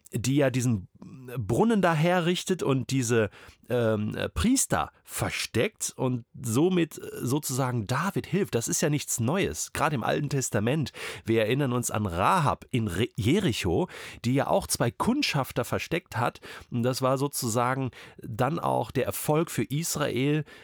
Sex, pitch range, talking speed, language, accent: male, 115-165 Hz, 140 wpm, German, German